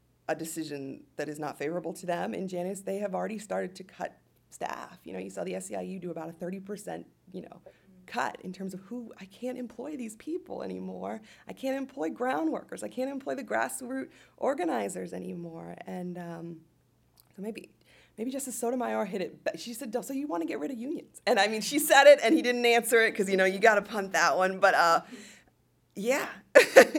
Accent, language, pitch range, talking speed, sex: American, English, 175-230 Hz, 215 wpm, female